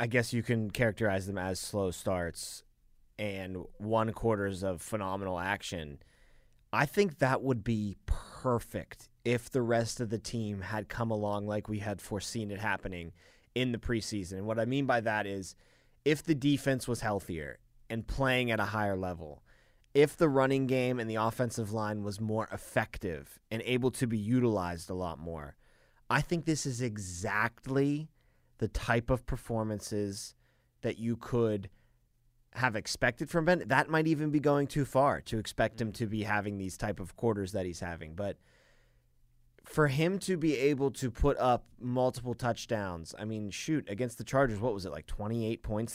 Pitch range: 100-130 Hz